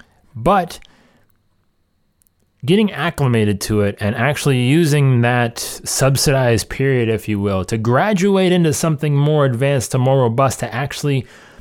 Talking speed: 130 wpm